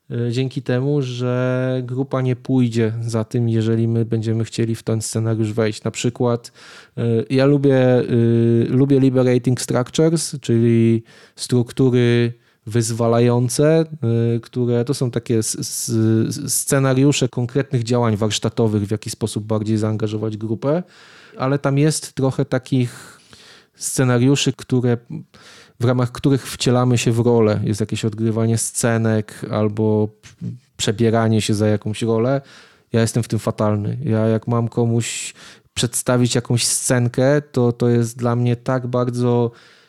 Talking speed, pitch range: 125 wpm, 115-130 Hz